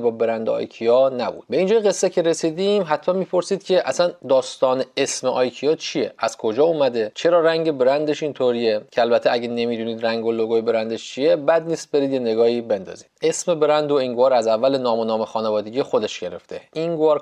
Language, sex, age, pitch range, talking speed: Persian, male, 30-49, 125-165 Hz, 180 wpm